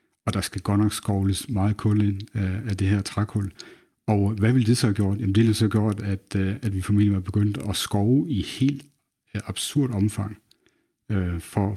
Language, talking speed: Danish, 200 wpm